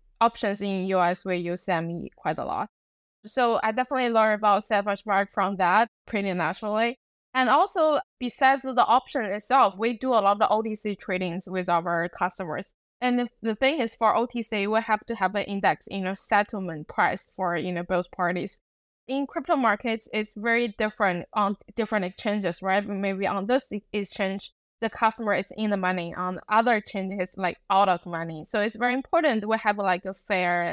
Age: 20-39